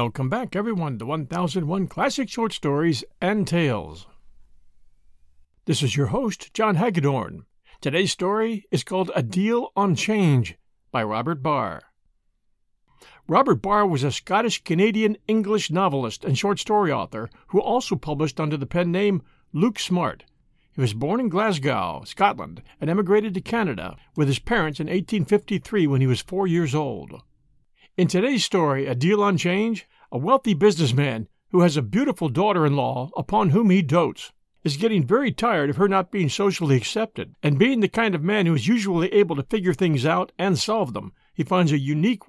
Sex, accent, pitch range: male, American, 140-205 Hz